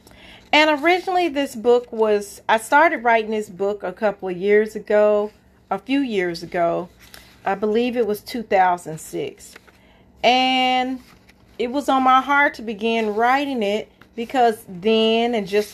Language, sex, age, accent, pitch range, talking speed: English, female, 40-59, American, 220-270 Hz, 145 wpm